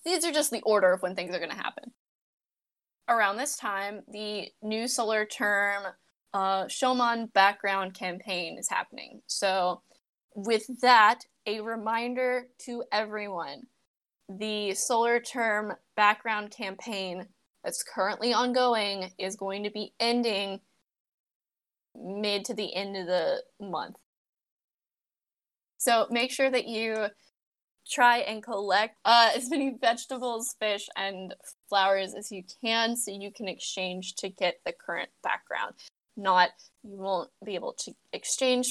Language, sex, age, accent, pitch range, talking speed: English, female, 10-29, American, 195-245 Hz, 130 wpm